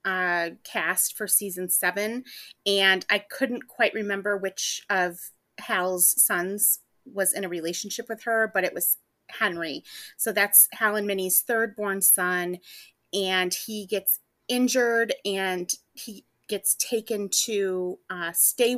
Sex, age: female, 30-49